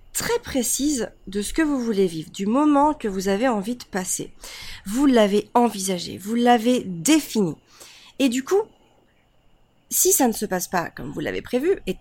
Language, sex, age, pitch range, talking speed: French, female, 30-49, 185-230 Hz, 180 wpm